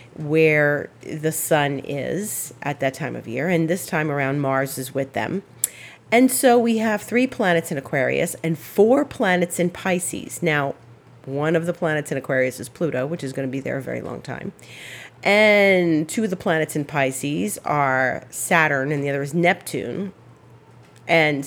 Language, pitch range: English, 135-175 Hz